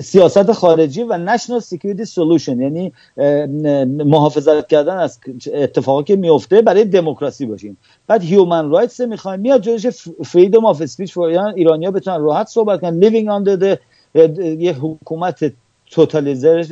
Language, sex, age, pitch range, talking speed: English, male, 50-69, 145-200 Hz, 135 wpm